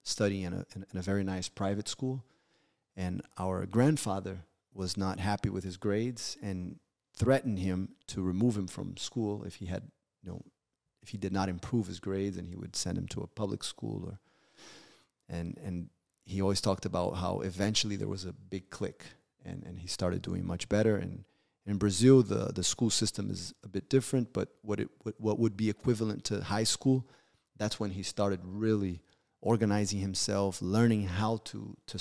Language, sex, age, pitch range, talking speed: English, male, 30-49, 95-115 Hz, 185 wpm